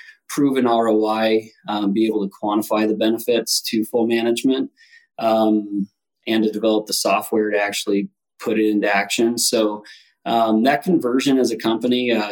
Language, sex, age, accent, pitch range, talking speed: English, male, 20-39, American, 100-115 Hz, 155 wpm